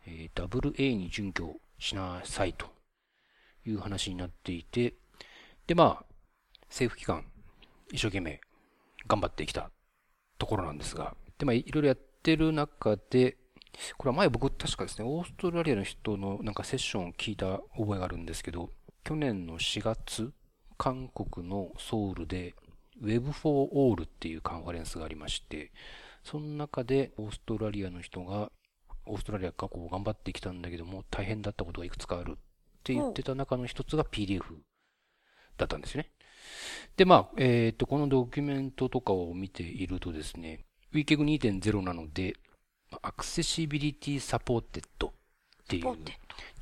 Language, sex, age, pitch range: Japanese, male, 40-59, 90-135 Hz